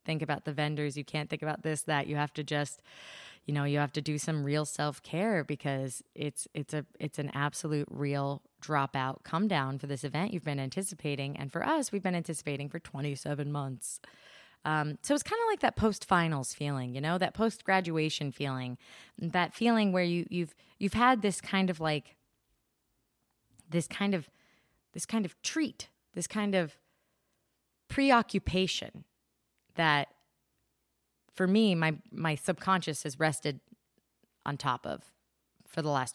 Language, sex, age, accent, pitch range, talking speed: English, female, 20-39, American, 140-175 Hz, 165 wpm